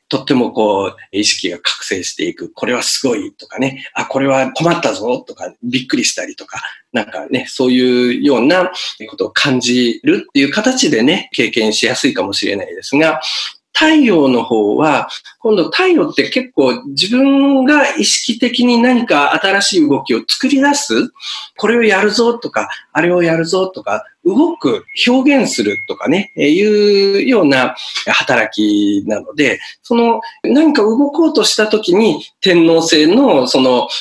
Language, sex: Japanese, male